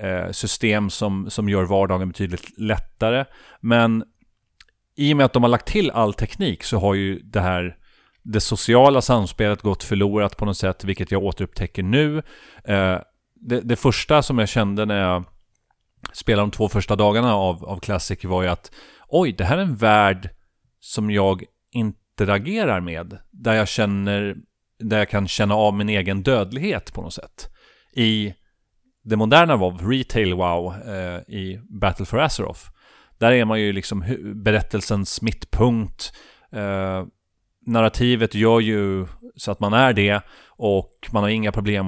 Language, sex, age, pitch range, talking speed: Swedish, male, 30-49, 95-115 Hz, 160 wpm